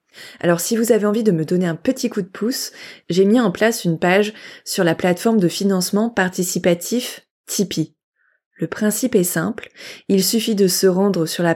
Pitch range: 170-210 Hz